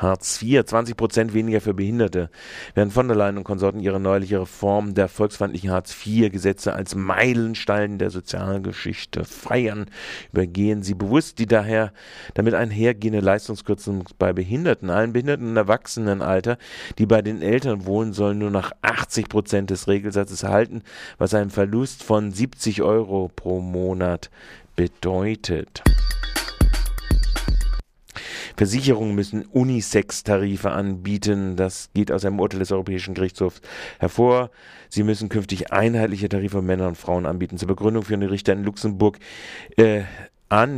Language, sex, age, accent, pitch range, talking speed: German, male, 40-59, German, 95-110 Hz, 135 wpm